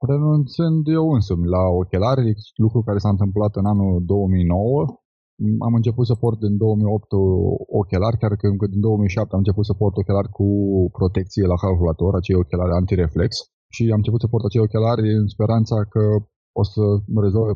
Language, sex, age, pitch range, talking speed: Romanian, male, 20-39, 95-110 Hz, 165 wpm